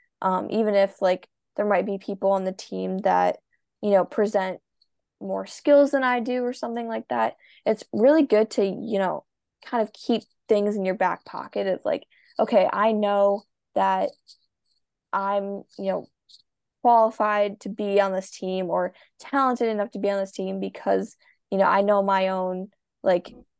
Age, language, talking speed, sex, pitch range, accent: 10-29, English, 175 wpm, female, 185-220 Hz, American